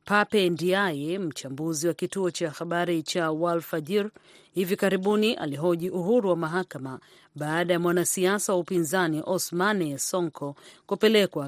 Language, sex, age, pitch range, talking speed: Swahili, female, 40-59, 160-195 Hz, 125 wpm